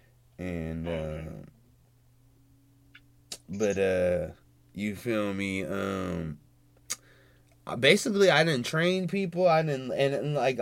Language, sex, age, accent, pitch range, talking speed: English, male, 20-39, American, 115-150 Hz, 100 wpm